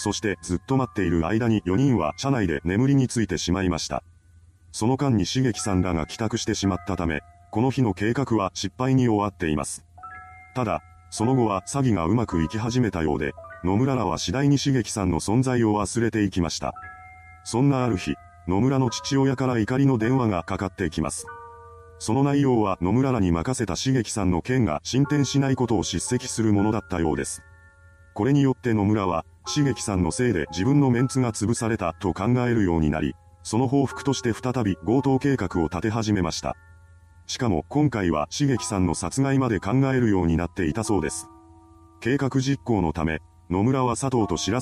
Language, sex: Japanese, male